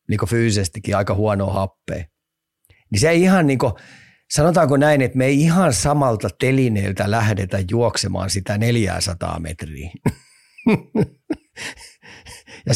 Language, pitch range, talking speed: Finnish, 100-120 Hz, 120 wpm